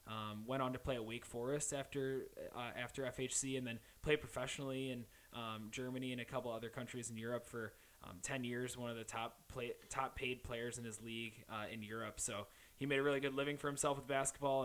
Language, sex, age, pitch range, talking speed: English, male, 20-39, 115-140 Hz, 225 wpm